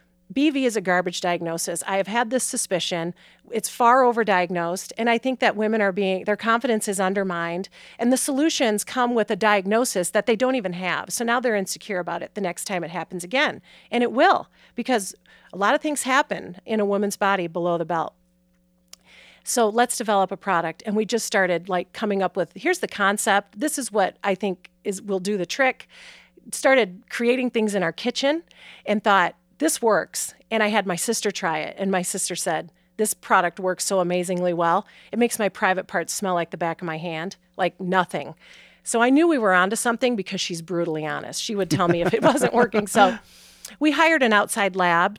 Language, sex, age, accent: English, female, 40-59, American